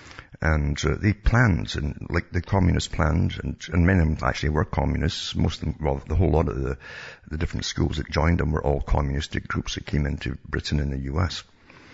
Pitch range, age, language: 80-100 Hz, 60-79, English